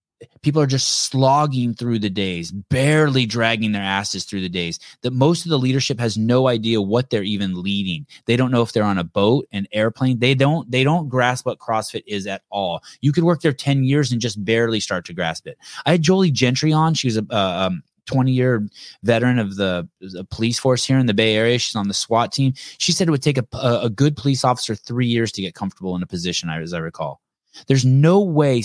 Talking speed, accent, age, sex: 230 wpm, American, 20-39, male